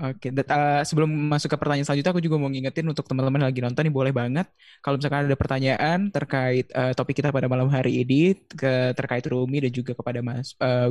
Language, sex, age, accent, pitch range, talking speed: Indonesian, male, 10-29, native, 125-140 Hz, 220 wpm